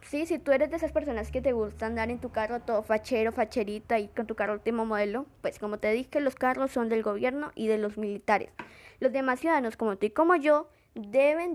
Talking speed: 235 wpm